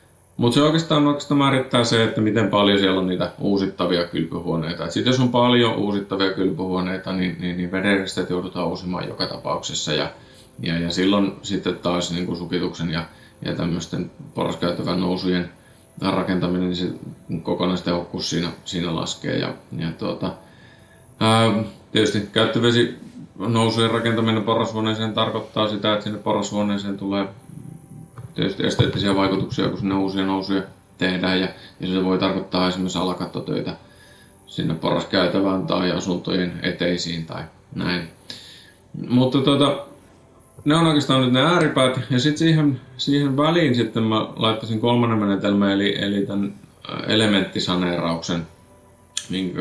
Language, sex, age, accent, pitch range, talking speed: Finnish, male, 30-49, native, 90-115 Hz, 130 wpm